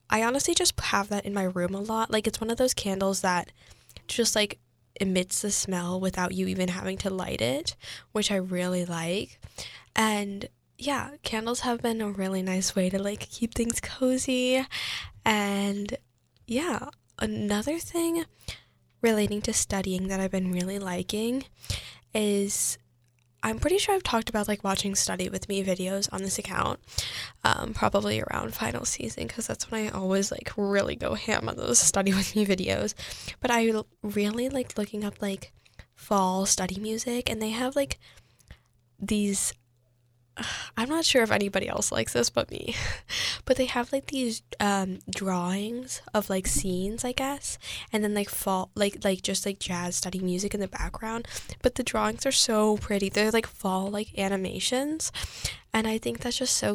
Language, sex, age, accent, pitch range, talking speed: English, female, 10-29, American, 185-225 Hz, 170 wpm